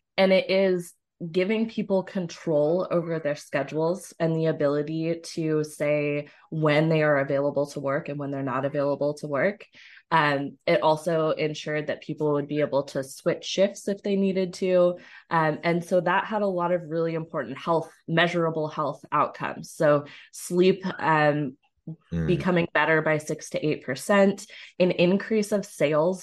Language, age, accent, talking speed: English, 20-39, American, 160 wpm